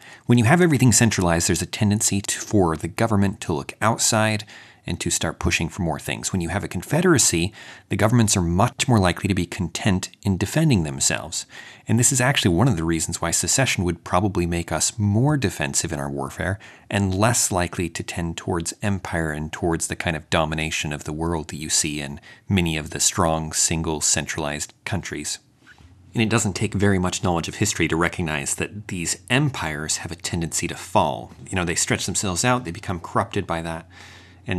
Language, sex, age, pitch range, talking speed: English, male, 30-49, 85-105 Hz, 200 wpm